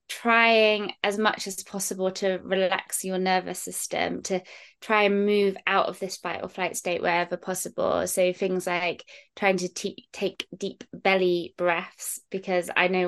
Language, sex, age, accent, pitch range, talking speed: English, female, 20-39, British, 180-205 Hz, 160 wpm